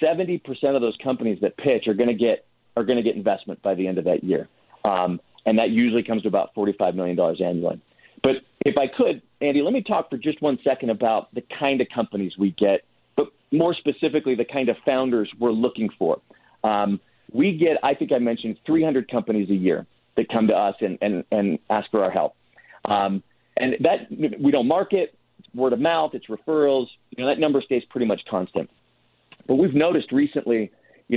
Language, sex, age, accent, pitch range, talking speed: English, male, 40-59, American, 105-140 Hz, 210 wpm